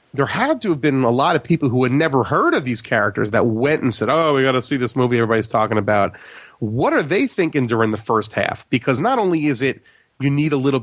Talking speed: 260 wpm